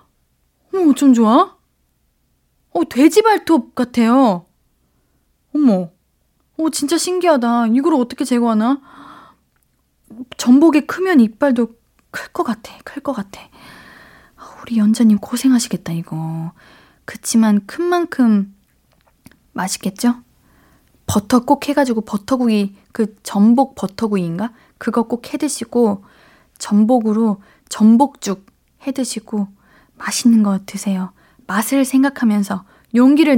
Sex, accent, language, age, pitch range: female, native, Korean, 20-39, 205-275 Hz